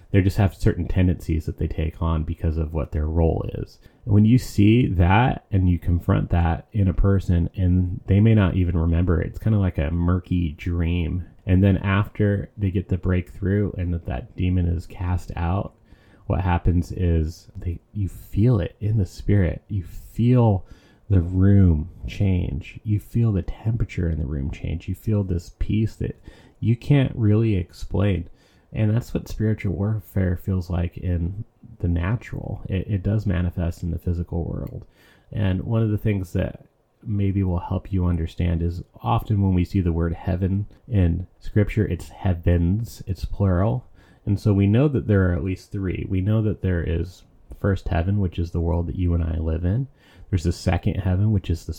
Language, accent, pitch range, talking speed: English, American, 85-105 Hz, 190 wpm